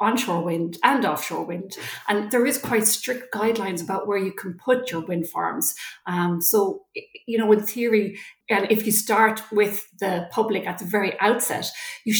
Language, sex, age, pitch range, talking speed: English, female, 40-59, 185-225 Hz, 180 wpm